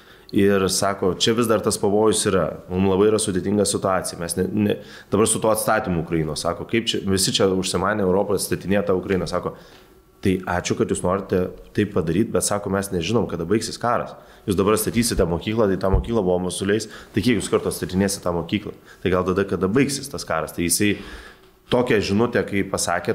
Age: 20-39